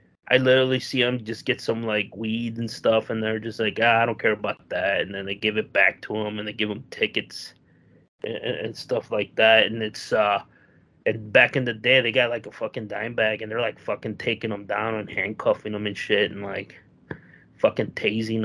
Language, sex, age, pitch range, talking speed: English, male, 20-39, 105-125 Hz, 230 wpm